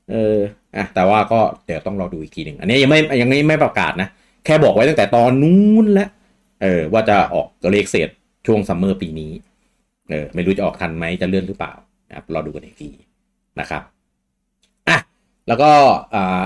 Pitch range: 85-120 Hz